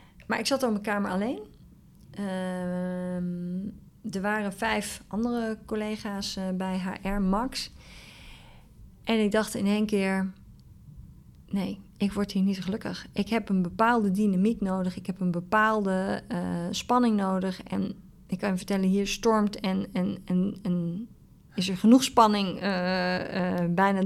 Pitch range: 185-215 Hz